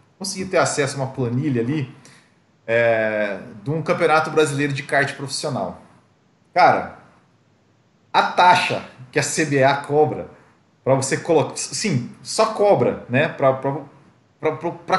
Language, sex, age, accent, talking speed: Portuguese, male, 40-59, Brazilian, 120 wpm